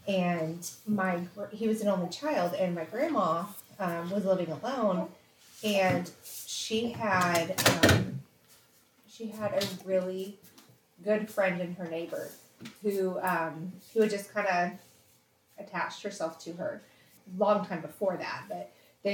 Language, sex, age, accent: English, female, 30-49, American